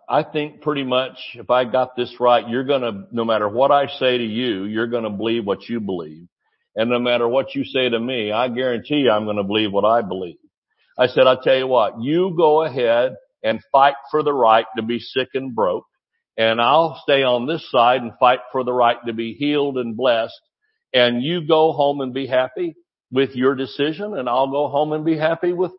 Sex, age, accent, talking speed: male, 60-79, American, 225 wpm